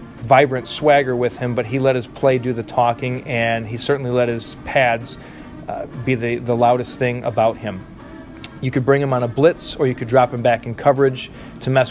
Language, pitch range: English, 120-135 Hz